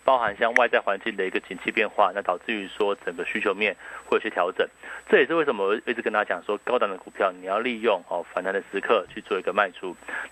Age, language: 30-49, Chinese